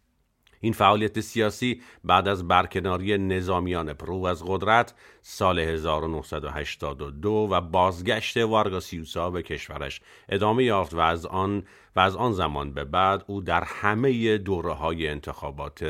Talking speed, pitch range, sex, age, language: 130 wpm, 80-105 Hz, male, 50-69, Persian